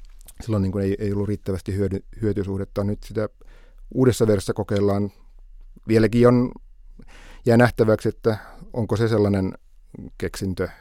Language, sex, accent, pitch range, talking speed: Finnish, male, native, 95-110 Hz, 120 wpm